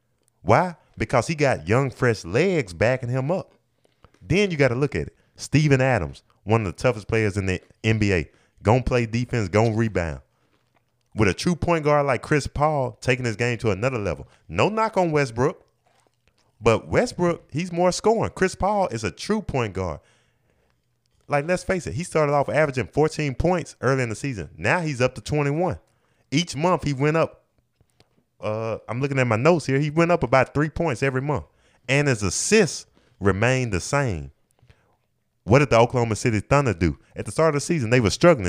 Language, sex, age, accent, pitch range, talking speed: English, male, 20-39, American, 110-145 Hz, 195 wpm